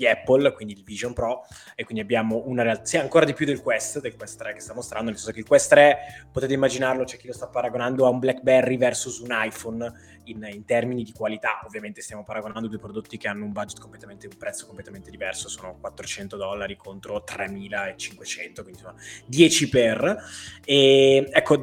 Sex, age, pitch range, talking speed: male, 20-39, 110-140 Hz, 200 wpm